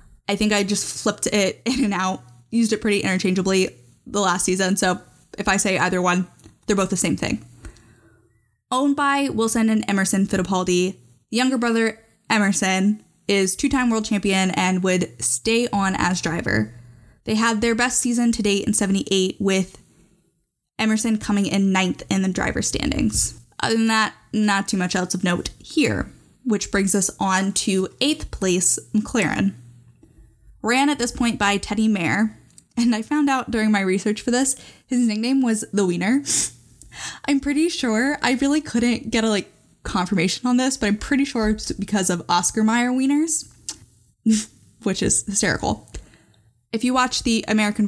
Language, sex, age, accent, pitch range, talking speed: English, female, 10-29, American, 185-230 Hz, 165 wpm